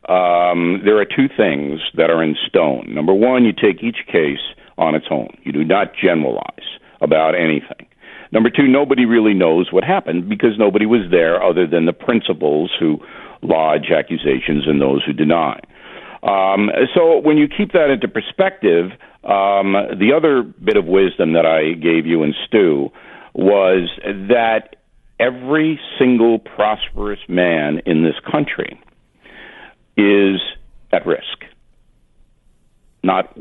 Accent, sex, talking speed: American, male, 140 wpm